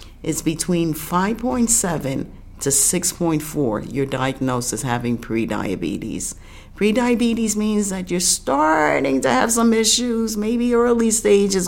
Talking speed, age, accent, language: 110 wpm, 50-69, American, English